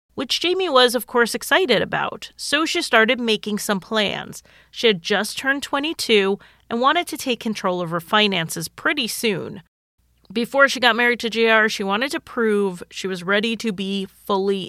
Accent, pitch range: American, 190-240 Hz